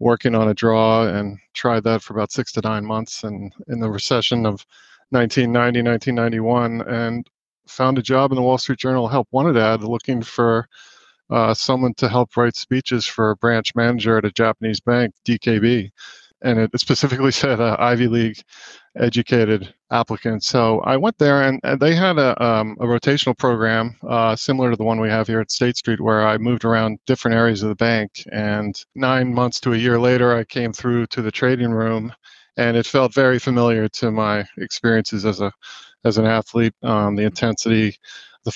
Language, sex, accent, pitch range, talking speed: English, male, American, 110-125 Hz, 190 wpm